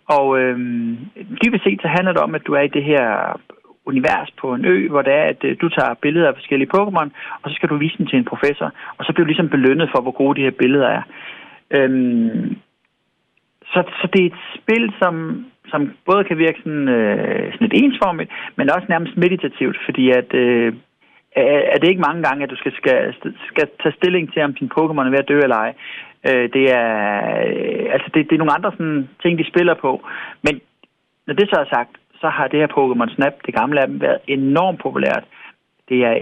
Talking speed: 215 wpm